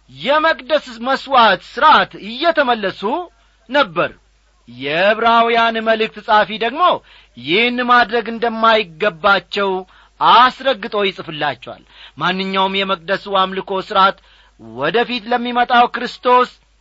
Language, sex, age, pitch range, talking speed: Amharic, male, 40-59, 180-260 Hz, 75 wpm